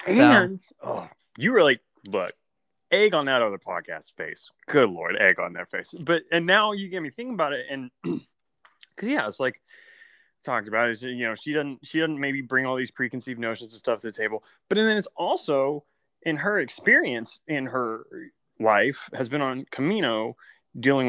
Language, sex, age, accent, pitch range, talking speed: English, male, 20-39, American, 115-150 Hz, 190 wpm